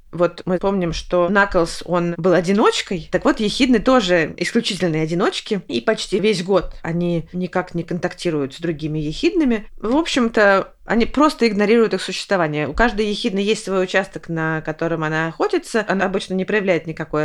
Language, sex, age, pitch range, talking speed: Russian, female, 20-39, 175-220 Hz, 165 wpm